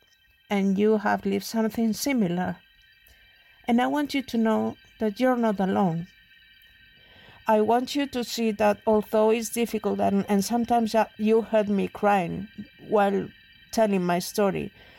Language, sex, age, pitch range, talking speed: English, female, 50-69, 190-225 Hz, 145 wpm